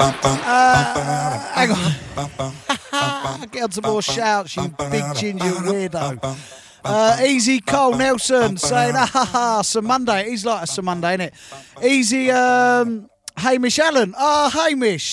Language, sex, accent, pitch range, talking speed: English, male, British, 160-225 Hz, 140 wpm